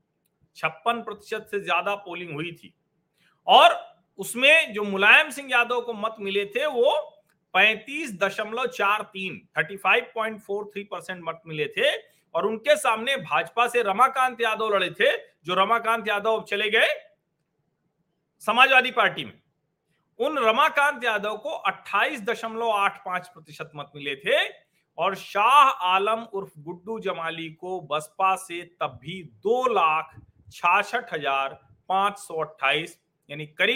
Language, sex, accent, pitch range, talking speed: Hindi, male, native, 165-230 Hz, 90 wpm